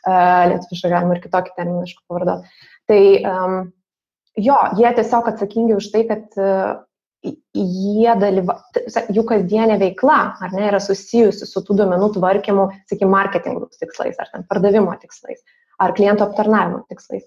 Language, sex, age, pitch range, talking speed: English, female, 20-39, 190-220 Hz, 145 wpm